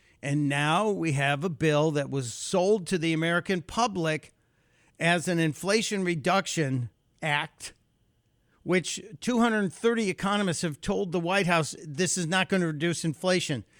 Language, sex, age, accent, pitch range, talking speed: English, male, 50-69, American, 135-185 Hz, 145 wpm